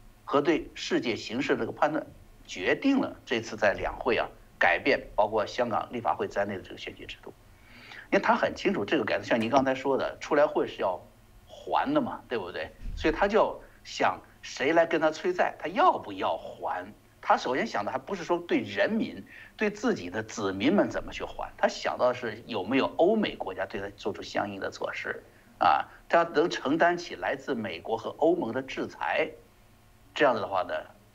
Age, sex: 60-79, male